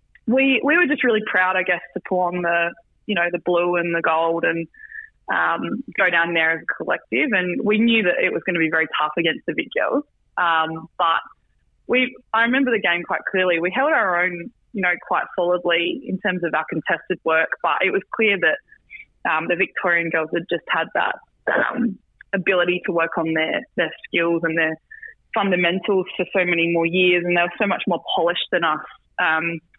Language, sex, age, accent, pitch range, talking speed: English, female, 20-39, Australian, 170-205 Hz, 210 wpm